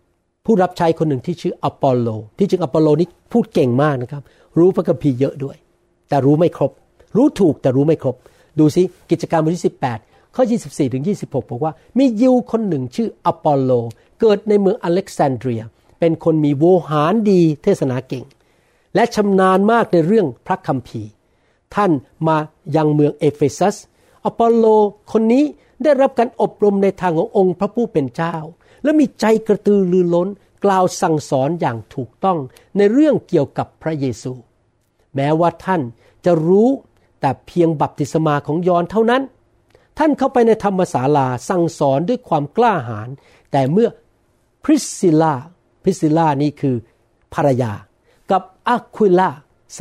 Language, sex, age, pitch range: Thai, male, 60-79, 140-205 Hz